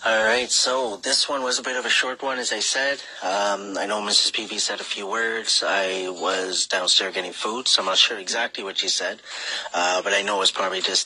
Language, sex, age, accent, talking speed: English, male, 30-49, American, 240 wpm